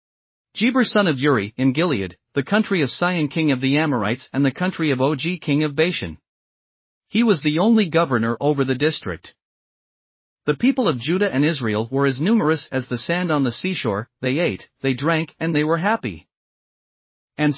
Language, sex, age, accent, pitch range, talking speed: English, male, 40-59, American, 130-175 Hz, 185 wpm